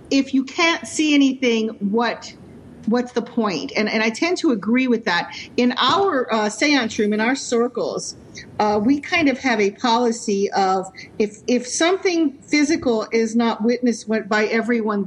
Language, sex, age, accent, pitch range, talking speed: English, female, 50-69, American, 210-250 Hz, 165 wpm